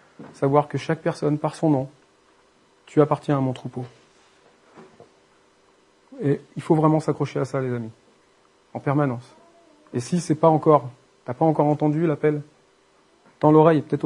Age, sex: 40-59, male